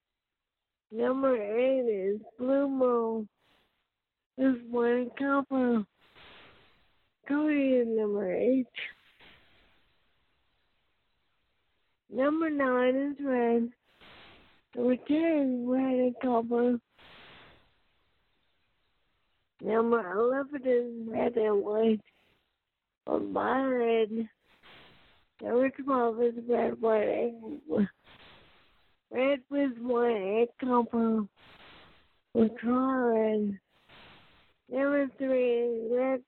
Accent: American